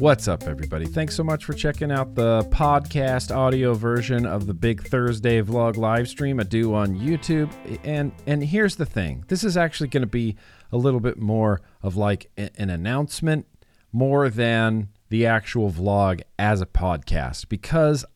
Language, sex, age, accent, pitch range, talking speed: English, male, 40-59, American, 105-145 Hz, 170 wpm